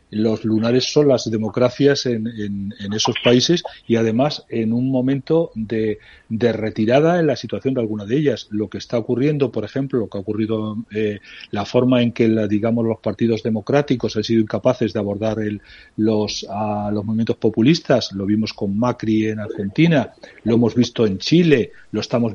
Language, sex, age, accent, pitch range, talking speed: Spanish, male, 40-59, Spanish, 110-140 Hz, 185 wpm